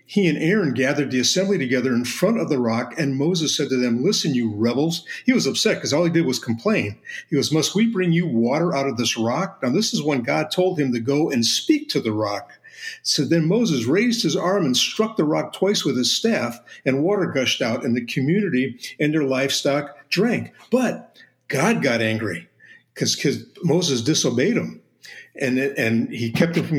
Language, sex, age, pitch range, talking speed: English, male, 50-69, 125-175 Hz, 210 wpm